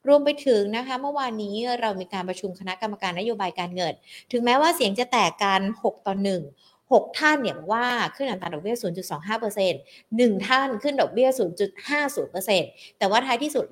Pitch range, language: 185-245 Hz, Thai